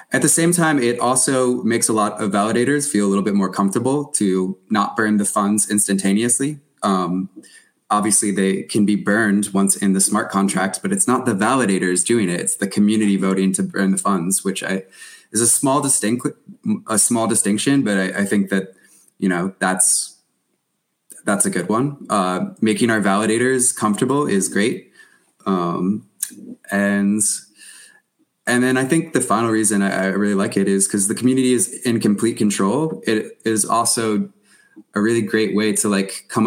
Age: 20-39